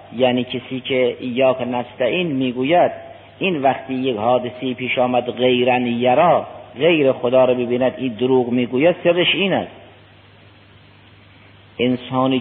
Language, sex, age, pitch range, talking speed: Persian, male, 50-69, 115-155 Hz, 120 wpm